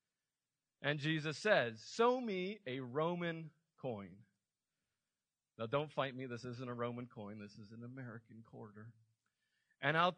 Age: 40-59